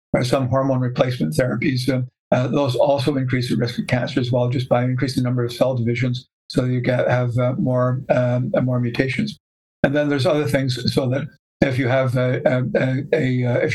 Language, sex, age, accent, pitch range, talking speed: English, male, 60-79, American, 125-135 Hz, 215 wpm